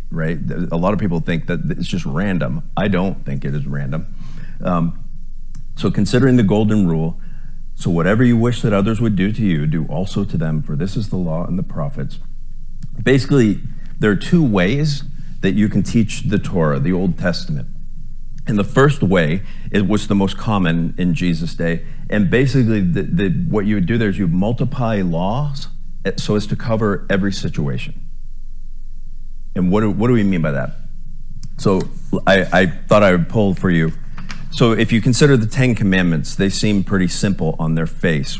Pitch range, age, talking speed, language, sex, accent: 90-125 Hz, 40-59, 190 wpm, English, male, American